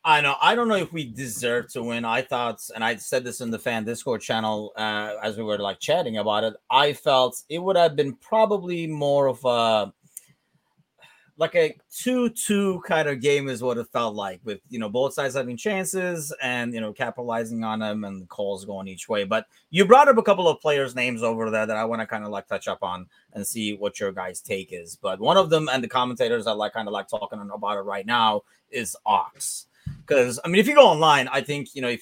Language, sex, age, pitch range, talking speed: English, male, 30-49, 105-150 Hz, 240 wpm